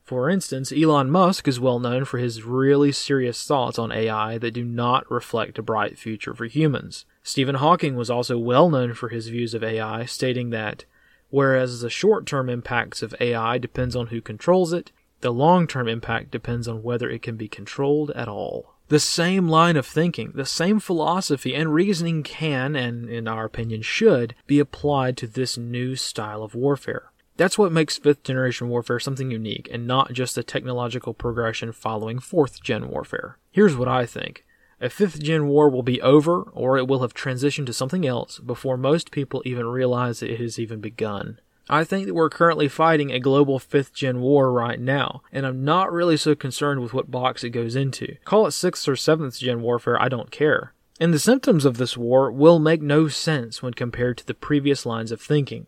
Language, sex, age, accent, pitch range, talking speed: English, male, 30-49, American, 120-150 Hz, 195 wpm